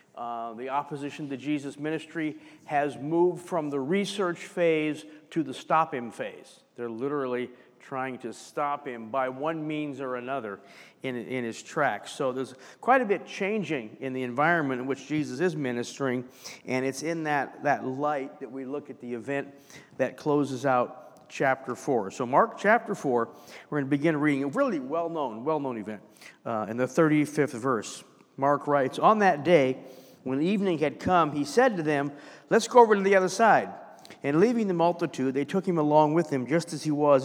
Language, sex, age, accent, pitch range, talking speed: English, male, 50-69, American, 135-175 Hz, 185 wpm